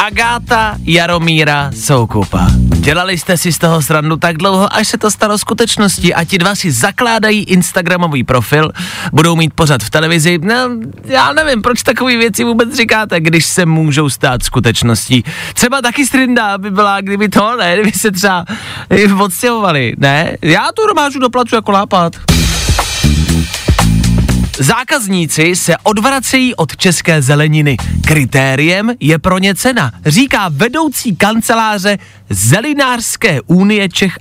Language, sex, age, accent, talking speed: Czech, male, 30-49, native, 135 wpm